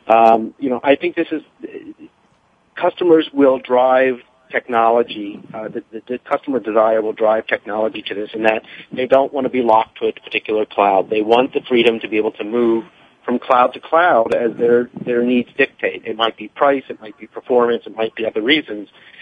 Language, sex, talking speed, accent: English, male, 205 wpm, American